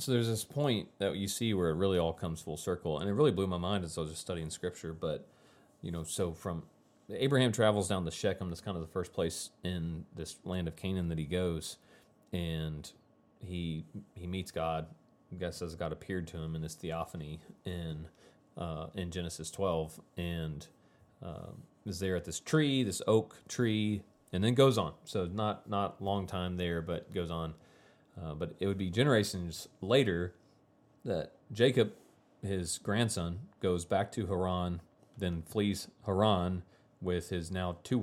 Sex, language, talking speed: male, English, 180 wpm